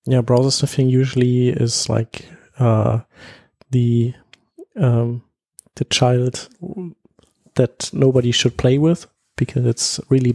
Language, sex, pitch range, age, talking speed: German, male, 115-130 Hz, 30-49, 110 wpm